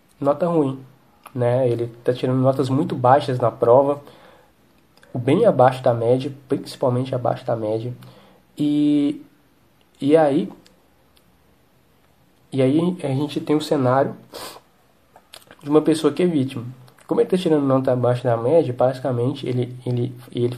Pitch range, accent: 120-150 Hz, Brazilian